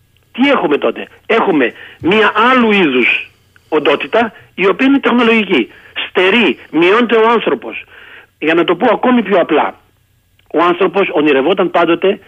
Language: Greek